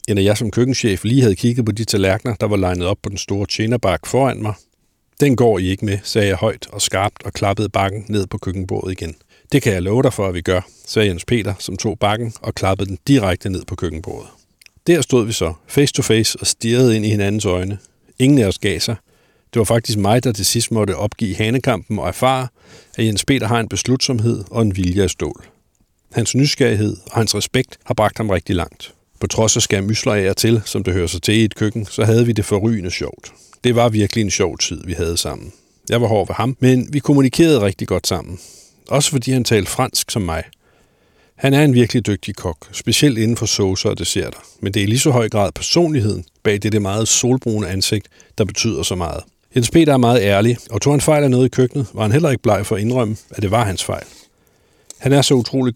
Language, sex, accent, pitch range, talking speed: Danish, male, native, 100-120 Hz, 235 wpm